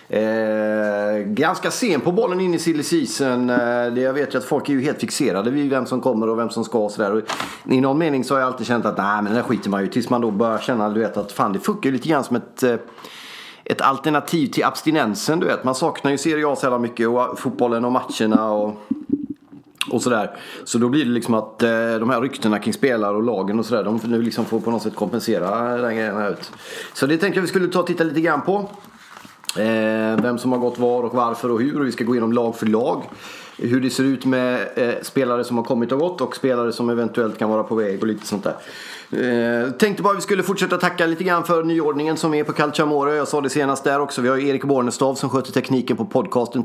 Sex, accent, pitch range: male, native, 110-135 Hz